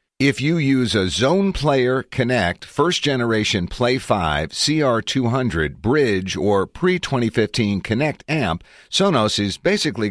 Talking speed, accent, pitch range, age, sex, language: 115 wpm, American, 90-130 Hz, 50-69, male, English